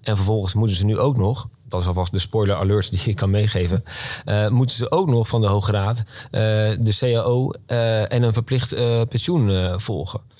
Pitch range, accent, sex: 100-115 Hz, Dutch, male